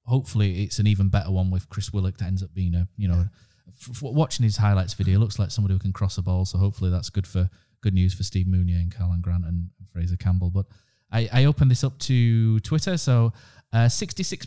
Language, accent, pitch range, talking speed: English, British, 95-120 Hz, 235 wpm